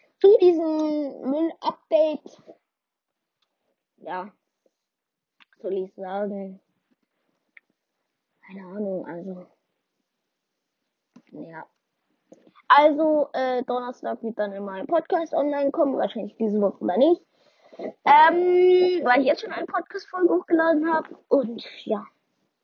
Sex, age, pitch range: female, 20-39, 205-310 Hz